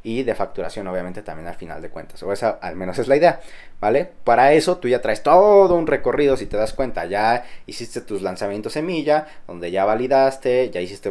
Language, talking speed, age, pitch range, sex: Spanish, 210 wpm, 20-39, 100-130 Hz, male